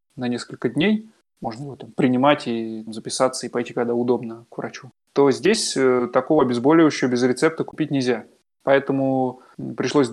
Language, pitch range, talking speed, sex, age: Russian, 125-145 Hz, 150 wpm, male, 20-39